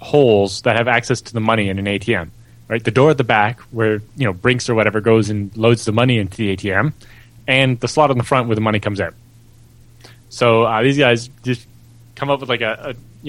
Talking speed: 240 wpm